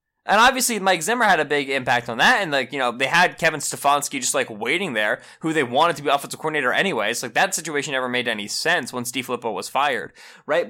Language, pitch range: English, 140-200 Hz